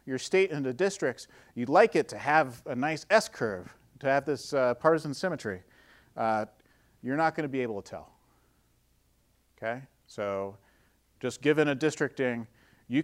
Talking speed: 160 wpm